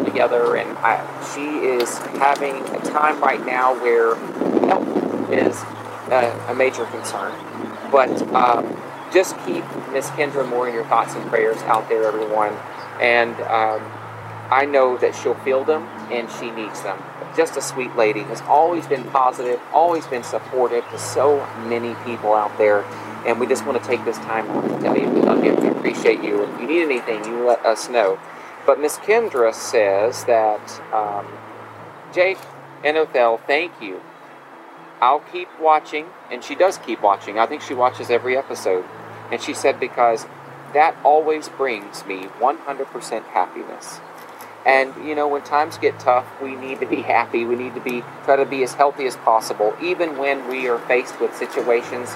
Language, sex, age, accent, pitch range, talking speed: English, male, 40-59, American, 115-140 Hz, 170 wpm